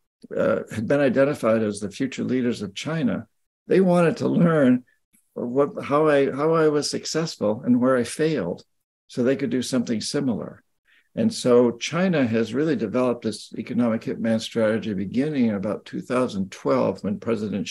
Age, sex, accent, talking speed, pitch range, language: 60-79, male, American, 155 wpm, 110-155 Hz, English